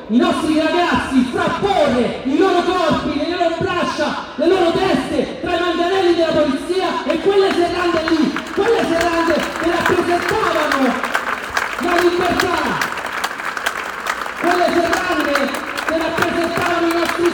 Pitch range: 235-325 Hz